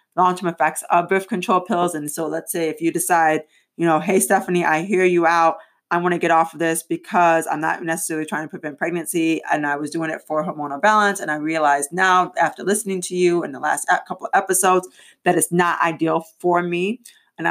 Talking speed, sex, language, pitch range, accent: 225 wpm, female, English, 165-215 Hz, American